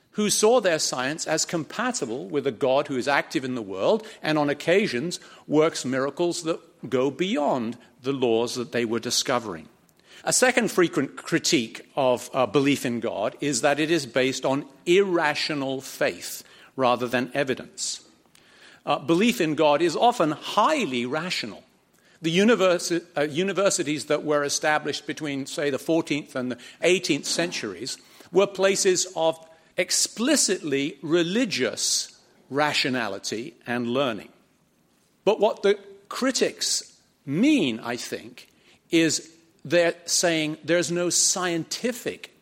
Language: English